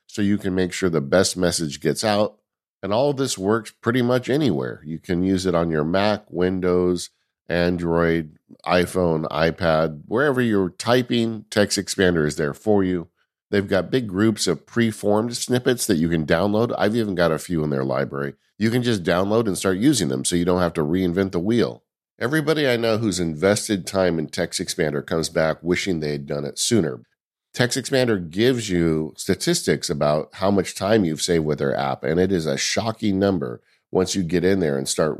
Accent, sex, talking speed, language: American, male, 200 wpm, English